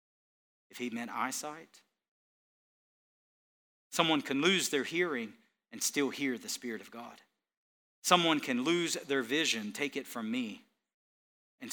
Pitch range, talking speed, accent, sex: 125-195 Hz, 135 wpm, American, male